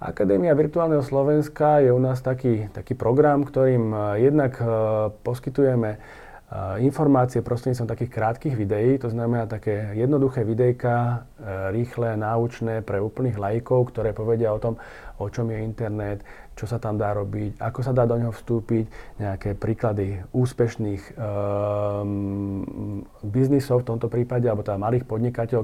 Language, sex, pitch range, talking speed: Slovak, male, 105-130 Hz, 135 wpm